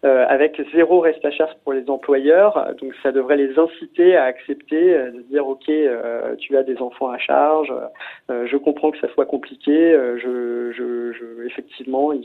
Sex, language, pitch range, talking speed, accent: male, French, 130-160 Hz, 195 wpm, French